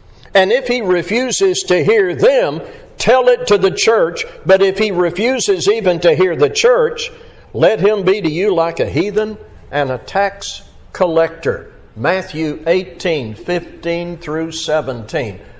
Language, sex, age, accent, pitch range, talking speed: English, male, 60-79, American, 165-240 Hz, 145 wpm